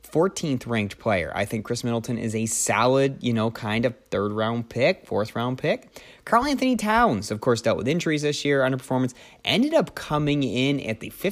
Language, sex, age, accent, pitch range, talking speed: English, male, 30-49, American, 105-135 Hz, 195 wpm